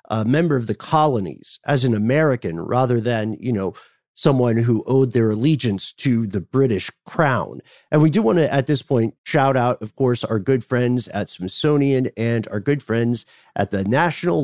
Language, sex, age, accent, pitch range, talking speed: English, male, 40-59, American, 115-140 Hz, 185 wpm